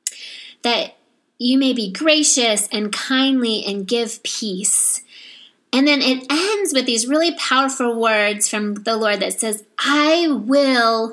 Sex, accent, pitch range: female, American, 215-275 Hz